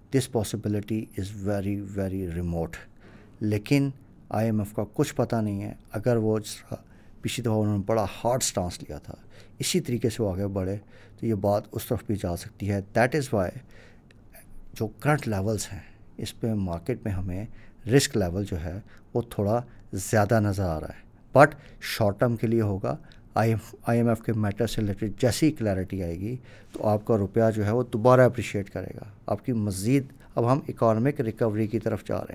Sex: male